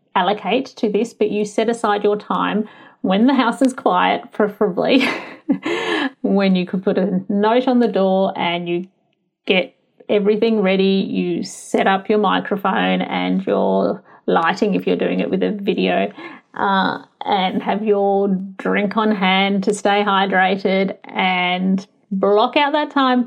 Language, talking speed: English, 150 wpm